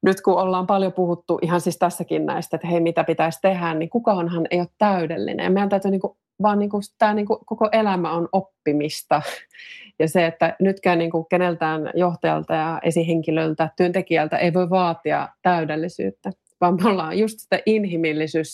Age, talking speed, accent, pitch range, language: 30-49, 170 wpm, native, 160-185 Hz, Finnish